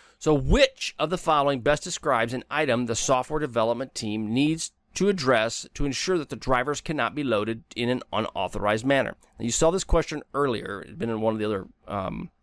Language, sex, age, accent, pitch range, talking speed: English, male, 30-49, American, 115-155 Hz, 210 wpm